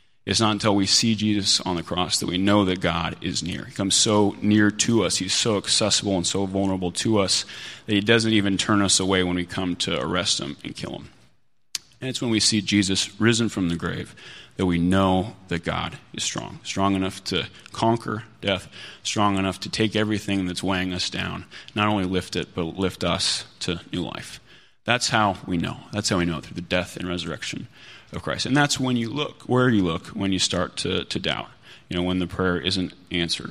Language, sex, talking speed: English, male, 220 wpm